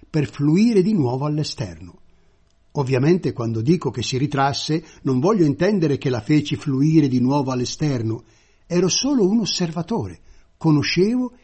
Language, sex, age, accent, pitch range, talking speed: Italian, male, 60-79, native, 110-175 Hz, 135 wpm